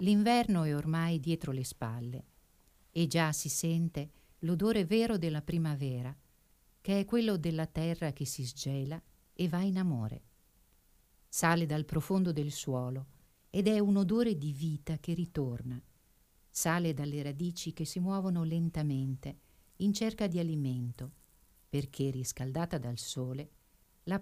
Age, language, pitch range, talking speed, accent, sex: 50-69, Italian, 135-185 Hz, 135 wpm, native, female